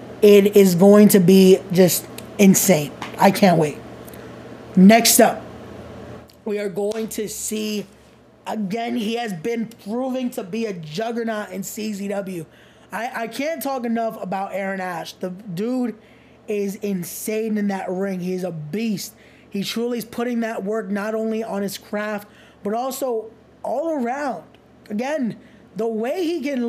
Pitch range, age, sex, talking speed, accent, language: 210-270 Hz, 20-39, male, 150 wpm, American, English